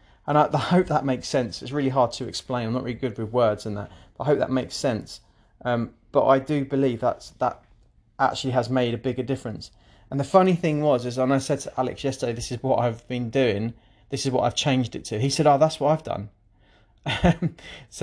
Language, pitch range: English, 115-135 Hz